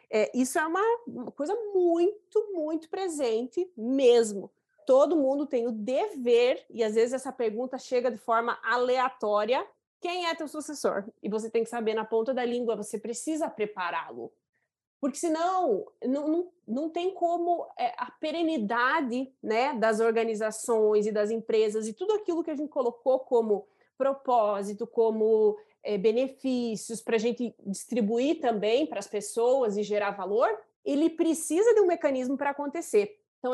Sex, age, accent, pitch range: female, 20-39, Brazilian, 225-300 Hz